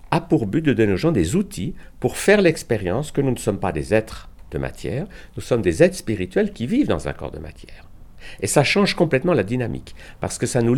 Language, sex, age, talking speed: French, male, 60-79, 240 wpm